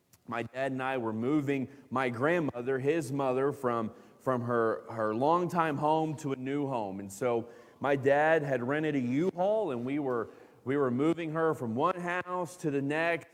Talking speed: 185 wpm